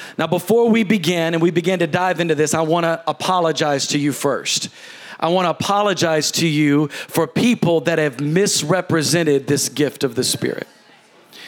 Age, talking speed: 40-59, 180 wpm